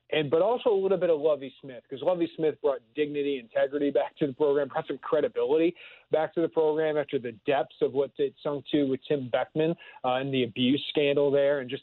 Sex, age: male, 40-59